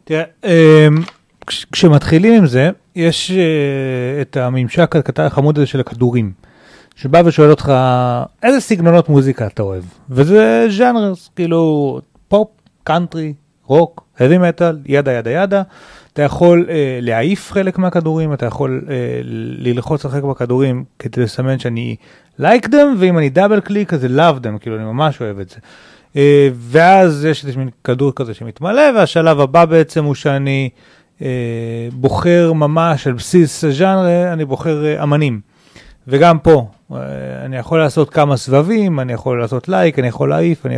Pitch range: 130-170 Hz